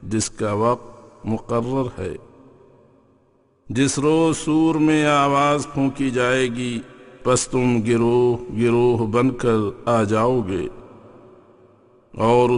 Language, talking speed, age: English, 110 wpm, 50-69